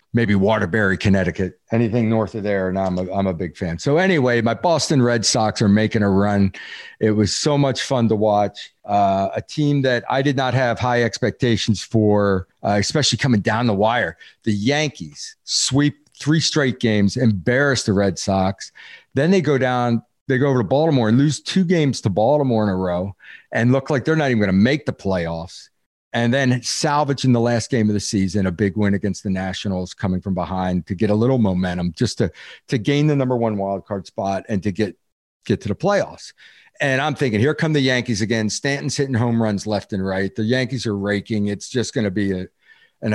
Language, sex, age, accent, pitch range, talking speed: English, male, 40-59, American, 100-130 Hz, 210 wpm